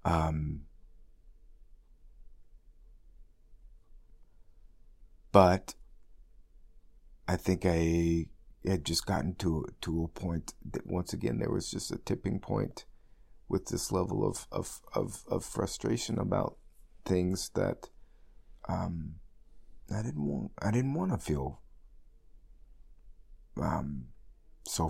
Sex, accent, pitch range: male, American, 80-95 Hz